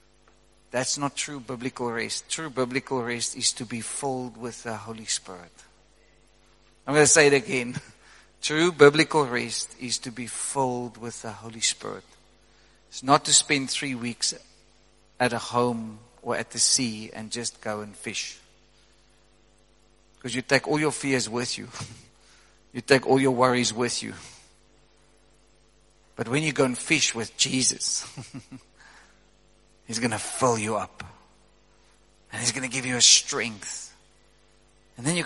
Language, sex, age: English, male, 50-69